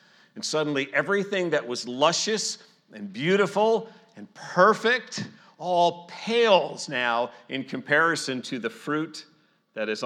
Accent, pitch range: American, 115-175 Hz